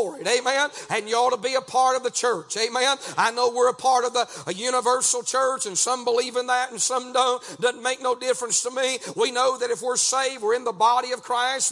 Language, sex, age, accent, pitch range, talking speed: English, male, 40-59, American, 235-270 Hz, 240 wpm